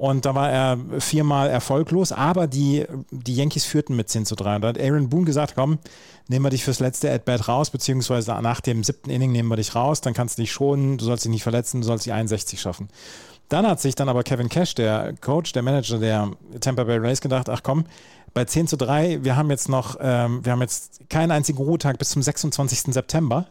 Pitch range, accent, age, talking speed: 120-150 Hz, German, 40-59, 230 wpm